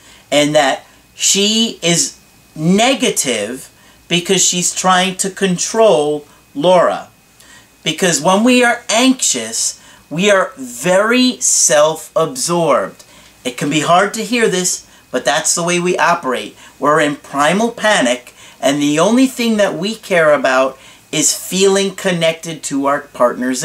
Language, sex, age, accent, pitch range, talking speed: English, male, 40-59, American, 145-205 Hz, 130 wpm